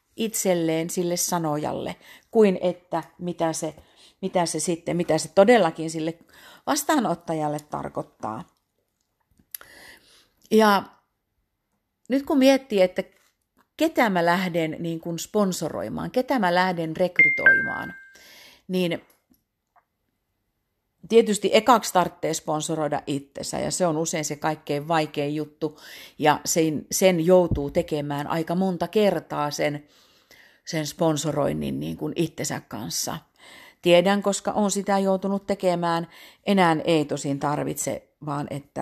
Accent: native